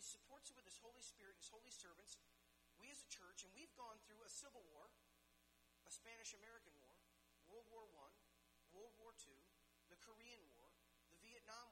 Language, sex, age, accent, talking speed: English, male, 40-59, American, 175 wpm